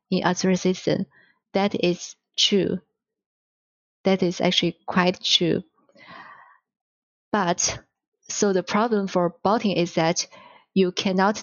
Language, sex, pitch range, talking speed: English, female, 175-205 Hz, 105 wpm